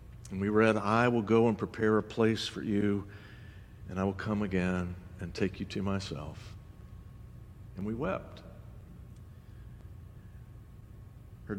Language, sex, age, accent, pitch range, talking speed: English, male, 60-79, American, 100-120 Hz, 135 wpm